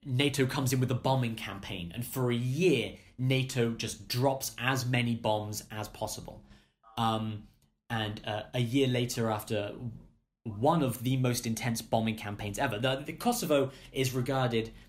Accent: British